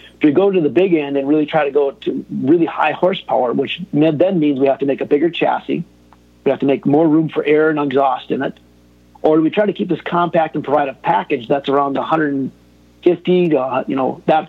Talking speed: 230 wpm